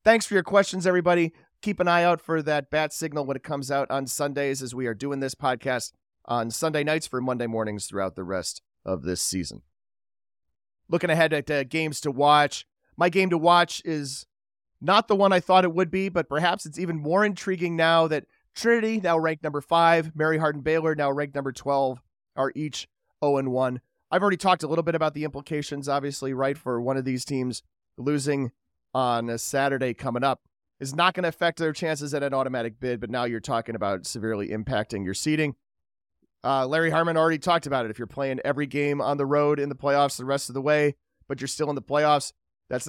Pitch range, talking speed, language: 125-155 Hz, 215 wpm, English